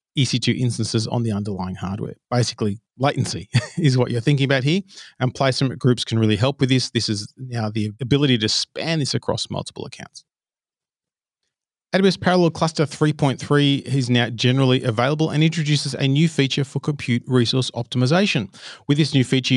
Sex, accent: male, Australian